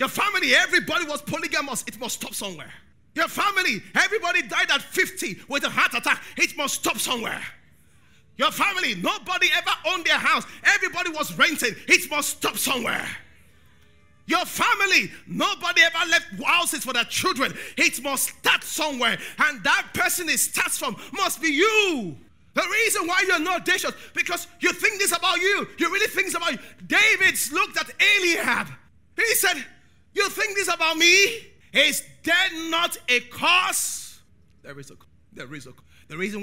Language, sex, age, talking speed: English, male, 30-49, 170 wpm